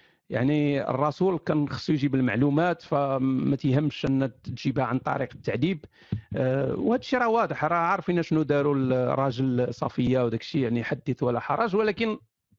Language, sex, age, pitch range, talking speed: Arabic, male, 50-69, 145-225 Hz, 140 wpm